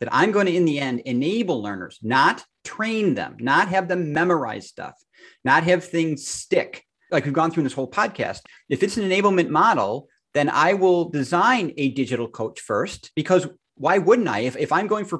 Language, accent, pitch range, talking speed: English, American, 125-175 Hz, 200 wpm